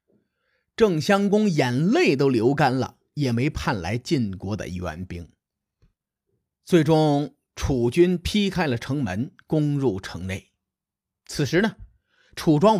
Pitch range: 125-210 Hz